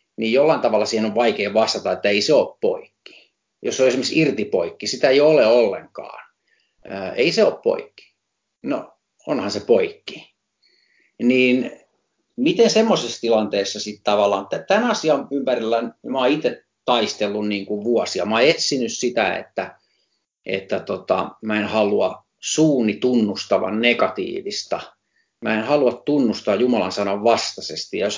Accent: native